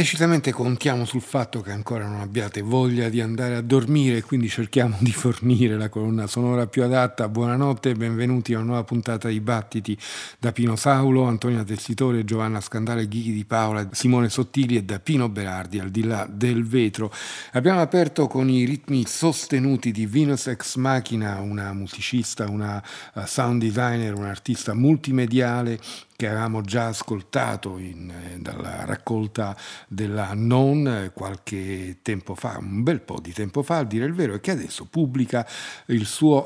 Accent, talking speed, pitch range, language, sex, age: native, 160 wpm, 105-130 Hz, Italian, male, 50-69